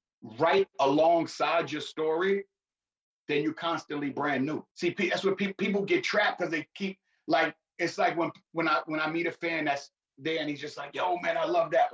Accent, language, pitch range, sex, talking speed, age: American, English, 145-185 Hz, male, 205 wpm, 30-49